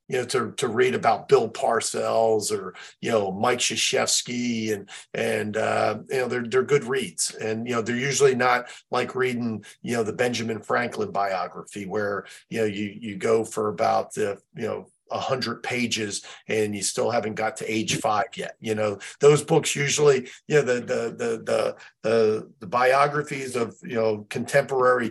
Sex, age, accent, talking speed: male, 40-59, American, 175 wpm